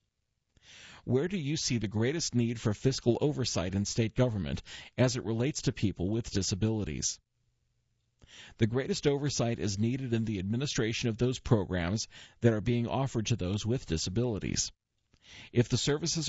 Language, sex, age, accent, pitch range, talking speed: English, male, 50-69, American, 105-130 Hz, 155 wpm